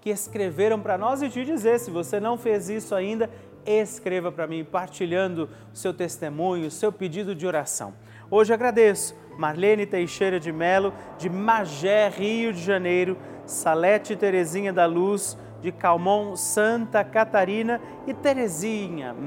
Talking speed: 145 wpm